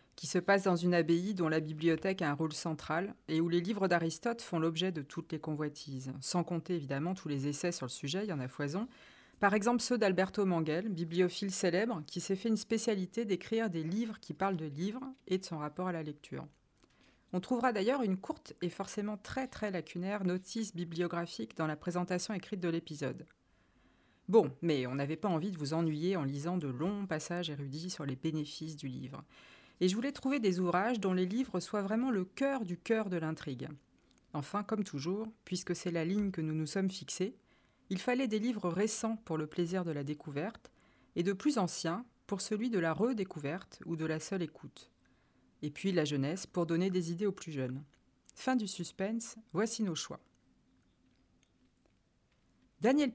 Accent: French